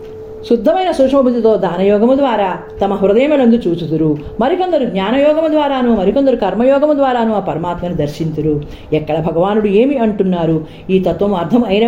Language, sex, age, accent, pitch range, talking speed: Telugu, female, 40-59, native, 175-250 Hz, 115 wpm